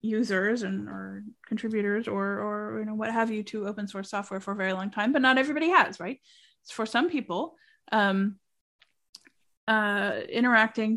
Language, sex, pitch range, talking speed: English, female, 205-245 Hz, 175 wpm